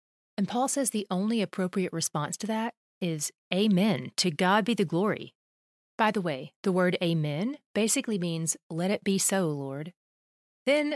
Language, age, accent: English, 30-49, American